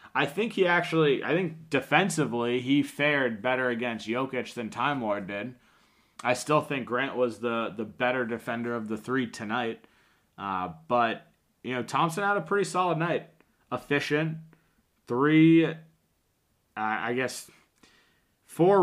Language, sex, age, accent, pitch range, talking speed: English, male, 20-39, American, 120-155 Hz, 145 wpm